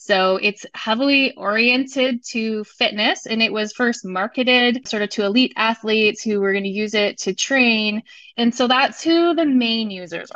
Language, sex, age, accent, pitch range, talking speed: English, female, 20-39, American, 200-245 Hz, 180 wpm